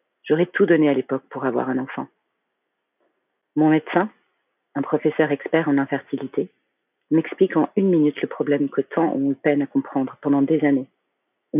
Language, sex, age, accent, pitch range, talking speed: French, female, 40-59, French, 150-190 Hz, 170 wpm